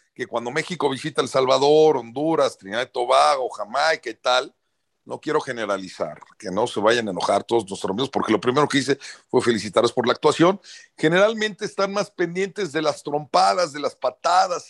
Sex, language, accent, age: male, Spanish, Mexican, 50-69